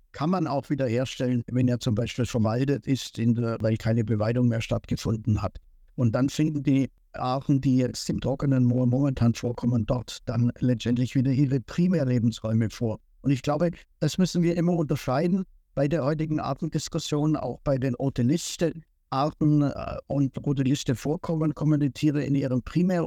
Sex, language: male, German